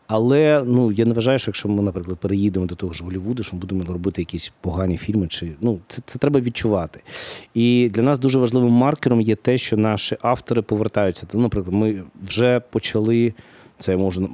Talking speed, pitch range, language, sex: 190 wpm, 95-115 Hz, Ukrainian, male